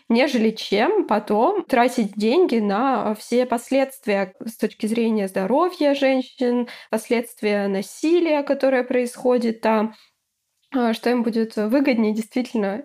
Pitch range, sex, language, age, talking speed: 230-275 Hz, female, Russian, 20-39, 105 wpm